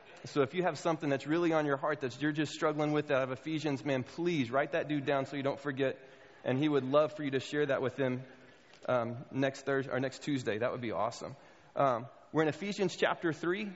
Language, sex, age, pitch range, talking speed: English, male, 20-39, 140-170 Hz, 240 wpm